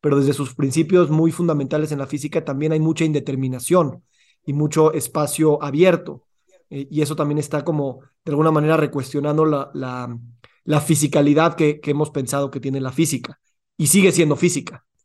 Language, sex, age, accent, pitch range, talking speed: Spanish, male, 30-49, Mexican, 140-165 Hz, 170 wpm